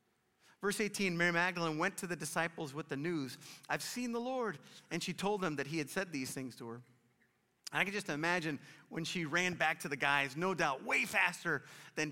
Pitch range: 165-225 Hz